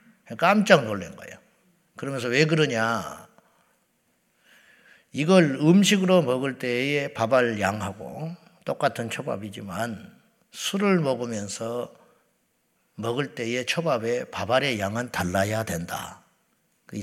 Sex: male